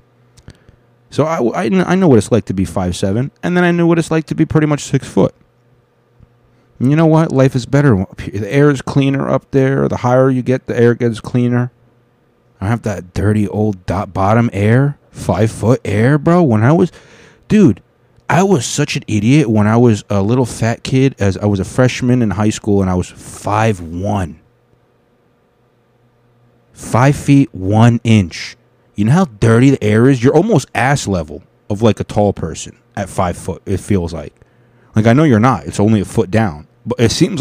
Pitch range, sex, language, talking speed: 105-135 Hz, male, English, 200 wpm